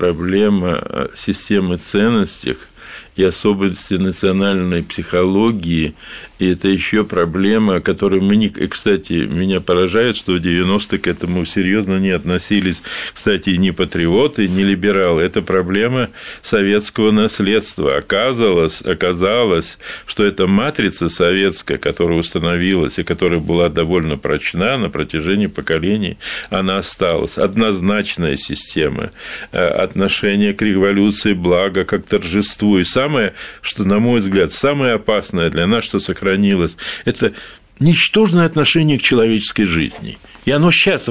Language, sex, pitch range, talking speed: Russian, male, 95-120 Hz, 115 wpm